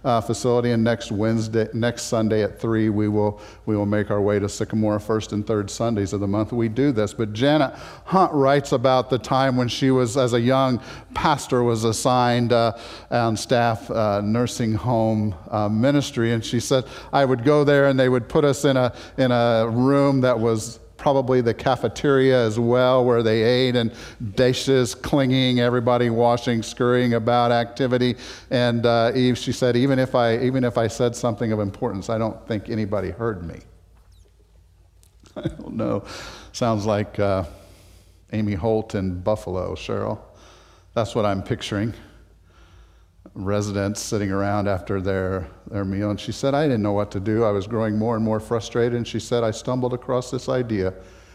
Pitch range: 100-125 Hz